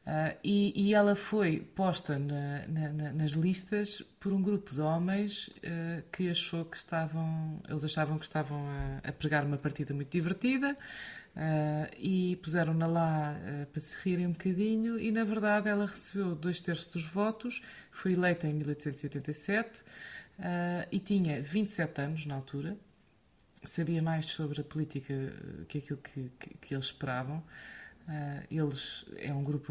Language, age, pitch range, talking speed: Portuguese, 20-39, 145-175 Hz, 135 wpm